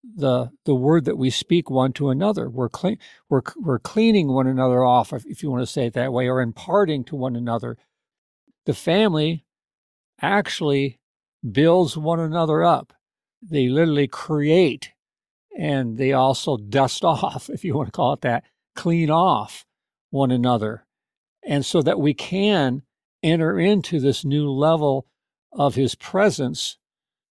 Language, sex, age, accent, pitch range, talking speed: English, male, 50-69, American, 130-175 Hz, 150 wpm